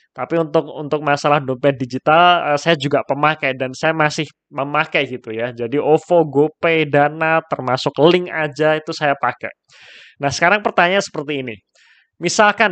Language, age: Indonesian, 20-39